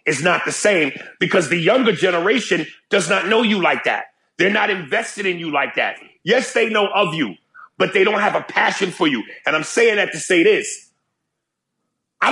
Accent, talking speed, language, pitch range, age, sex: American, 205 wpm, English, 170-225 Hz, 30-49, male